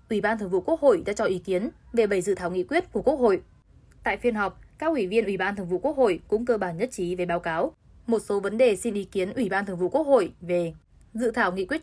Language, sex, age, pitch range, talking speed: Vietnamese, female, 10-29, 180-235 Hz, 290 wpm